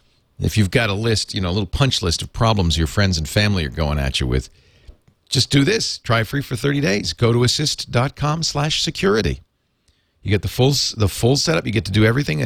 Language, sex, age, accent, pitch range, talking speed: English, male, 50-69, American, 95-130 Hz, 215 wpm